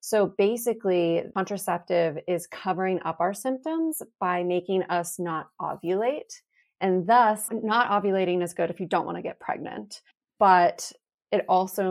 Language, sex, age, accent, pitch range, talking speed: English, female, 30-49, American, 170-200 Hz, 145 wpm